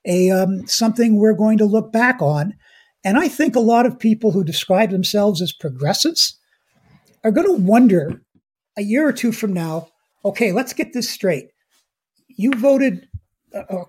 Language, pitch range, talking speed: English, 175-240 Hz, 170 wpm